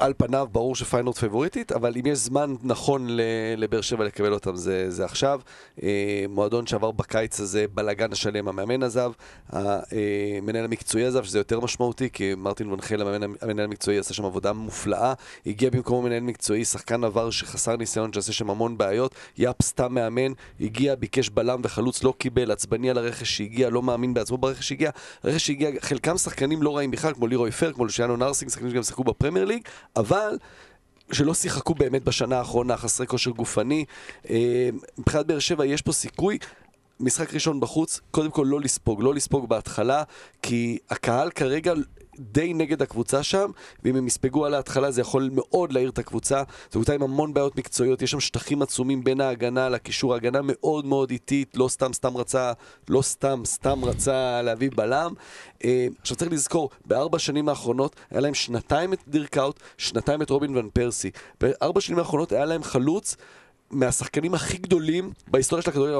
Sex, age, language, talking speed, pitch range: male, 30-49, Hebrew, 150 wpm, 115-140 Hz